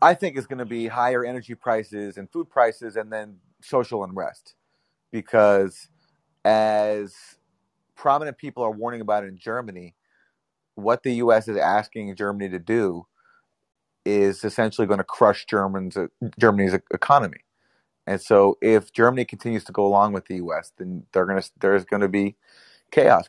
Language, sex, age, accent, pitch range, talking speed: English, male, 30-49, American, 100-125 Hz, 155 wpm